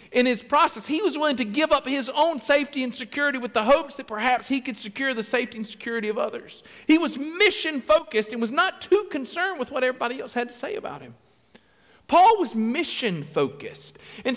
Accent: American